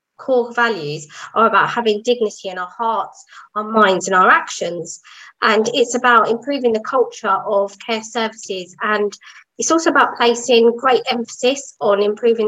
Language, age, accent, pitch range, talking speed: English, 20-39, British, 195-240 Hz, 155 wpm